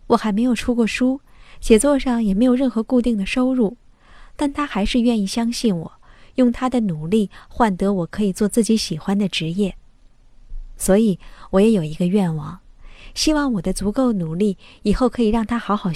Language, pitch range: Chinese, 190-240 Hz